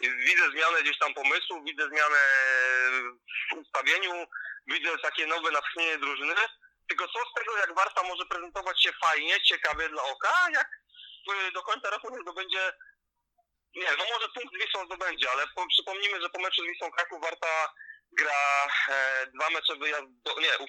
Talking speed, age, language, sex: 165 wpm, 30-49, Polish, male